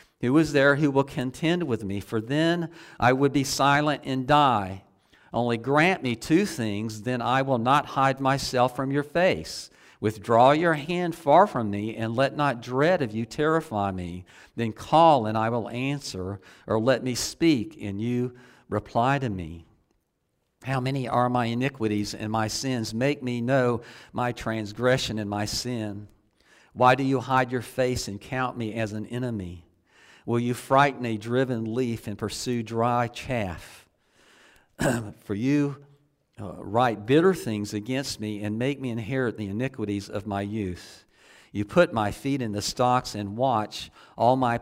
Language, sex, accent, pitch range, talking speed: English, male, American, 105-135 Hz, 170 wpm